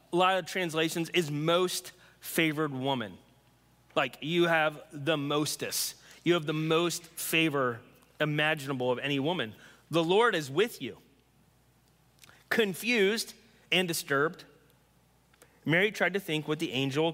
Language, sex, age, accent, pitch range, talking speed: English, male, 30-49, American, 145-185 Hz, 130 wpm